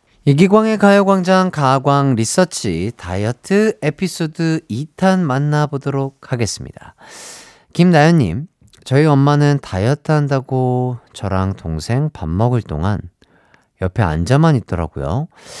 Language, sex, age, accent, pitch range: Korean, male, 40-59, native, 105-150 Hz